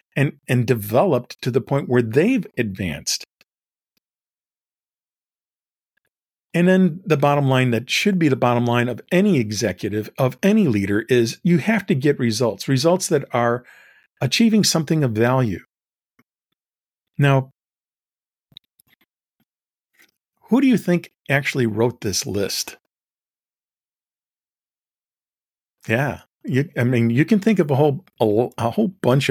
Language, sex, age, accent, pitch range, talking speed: English, male, 50-69, American, 120-170 Hz, 125 wpm